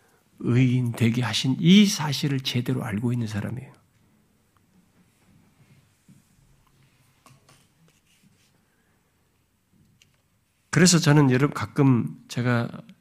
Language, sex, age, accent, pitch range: Korean, male, 50-69, native, 115-150 Hz